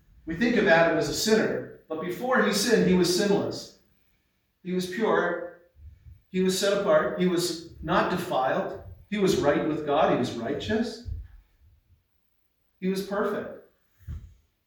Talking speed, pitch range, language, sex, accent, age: 145 wpm, 125-180 Hz, English, male, American, 40-59